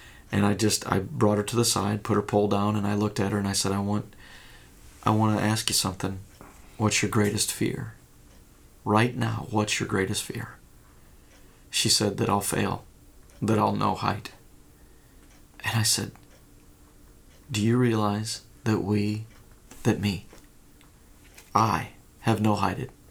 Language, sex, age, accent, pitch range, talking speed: English, male, 30-49, American, 100-115 Hz, 160 wpm